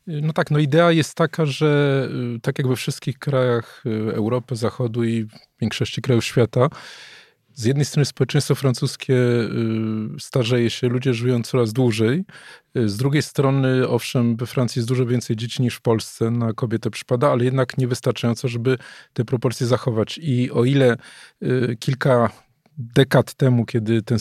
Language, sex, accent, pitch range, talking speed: Polish, male, native, 120-145 Hz, 150 wpm